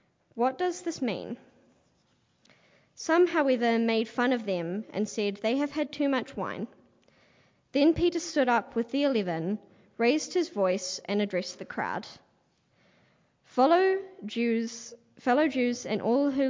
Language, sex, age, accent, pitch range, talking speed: English, female, 20-39, Australian, 195-255 Hz, 140 wpm